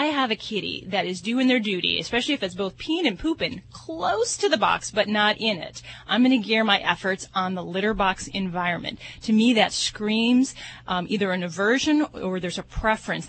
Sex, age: female, 30-49